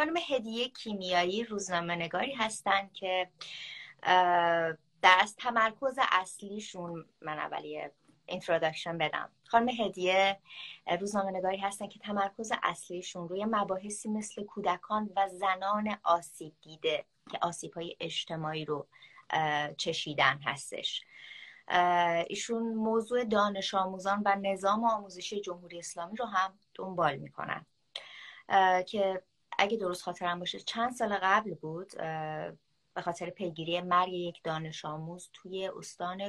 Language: English